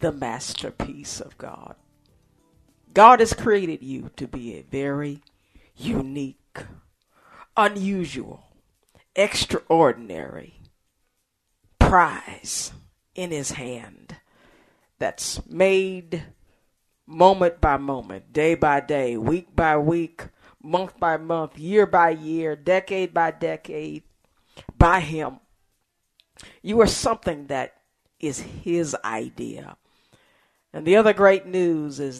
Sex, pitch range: female, 140-190 Hz